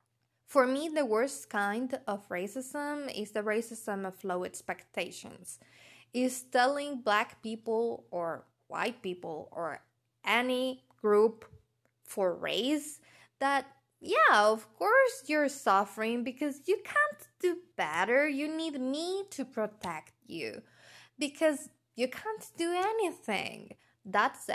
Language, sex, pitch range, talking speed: English, female, 205-295 Hz, 115 wpm